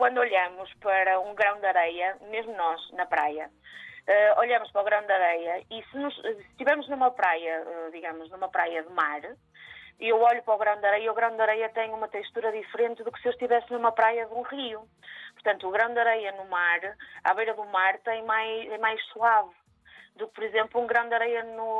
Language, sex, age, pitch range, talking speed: Portuguese, female, 20-39, 200-250 Hz, 225 wpm